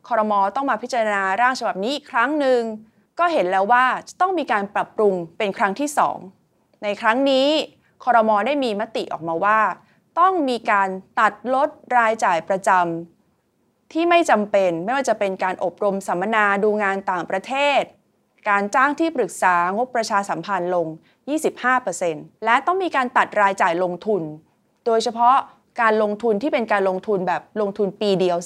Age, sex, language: 20-39, female, English